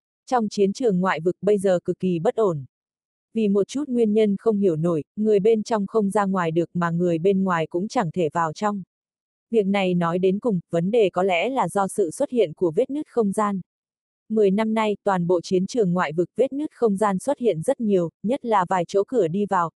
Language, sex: Vietnamese, female